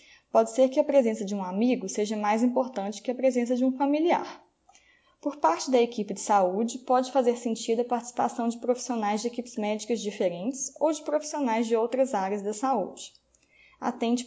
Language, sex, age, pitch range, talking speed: Portuguese, female, 20-39, 215-265 Hz, 180 wpm